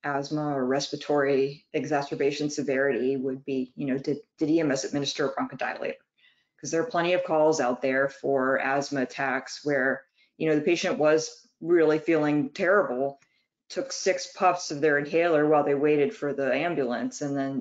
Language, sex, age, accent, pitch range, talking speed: English, female, 20-39, American, 140-180 Hz, 165 wpm